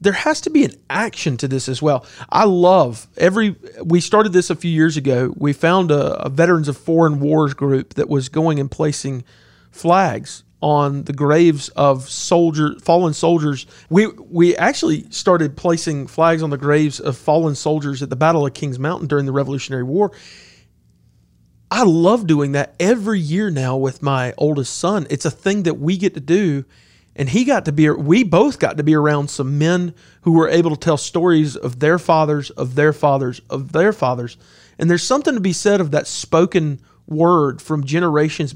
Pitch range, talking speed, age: 140-175 Hz, 190 wpm, 40-59